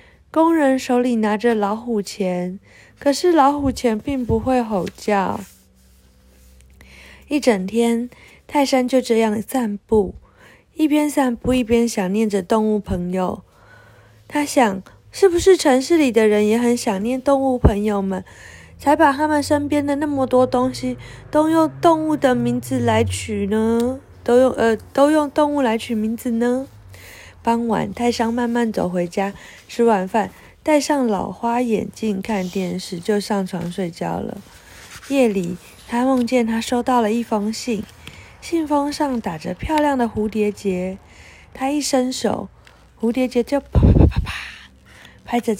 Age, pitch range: 20-39, 200-270 Hz